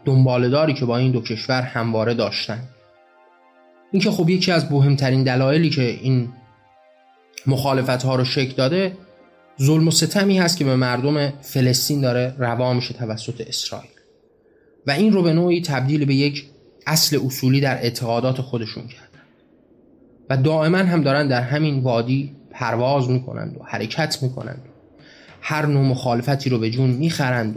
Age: 30-49